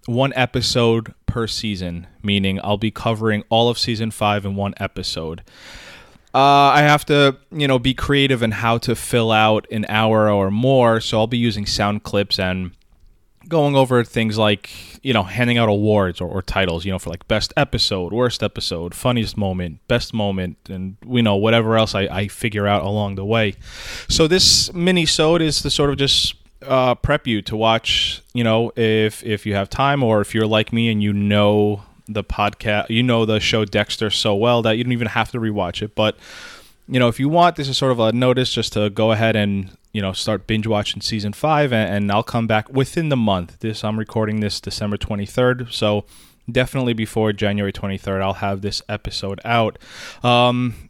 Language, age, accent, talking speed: English, 20-39, American, 200 wpm